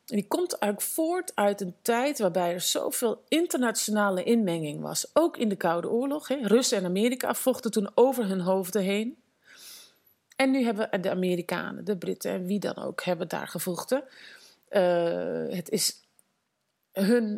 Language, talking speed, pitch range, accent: Dutch, 160 wpm, 180-235 Hz, Dutch